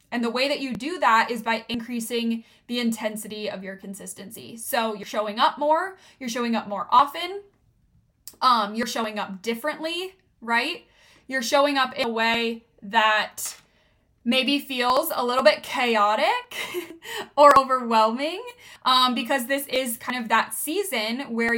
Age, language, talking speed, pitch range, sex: 10-29, English, 155 wpm, 220-265 Hz, female